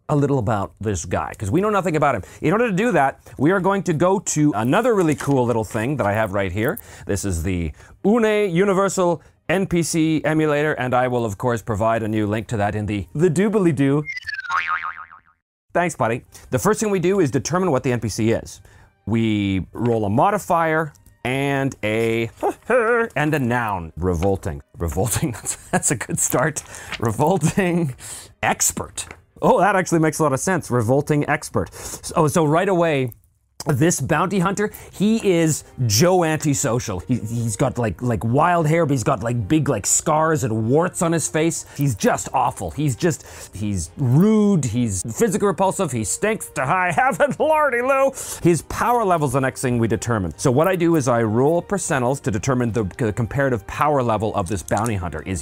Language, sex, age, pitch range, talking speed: English, male, 30-49, 110-165 Hz, 180 wpm